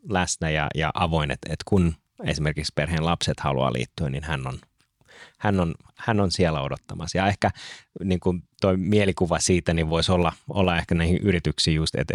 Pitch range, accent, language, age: 75-95 Hz, native, Finnish, 30-49